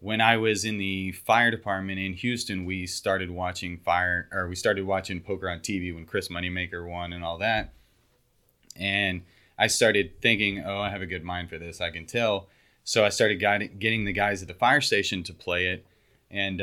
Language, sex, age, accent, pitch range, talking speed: English, male, 30-49, American, 90-100 Hz, 200 wpm